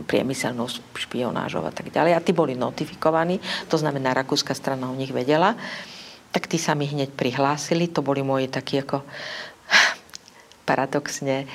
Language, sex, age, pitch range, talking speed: Slovak, female, 50-69, 135-165 Hz, 145 wpm